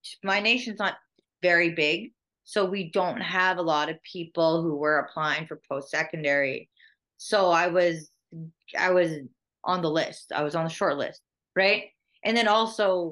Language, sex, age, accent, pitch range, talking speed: English, female, 30-49, American, 150-175 Hz, 170 wpm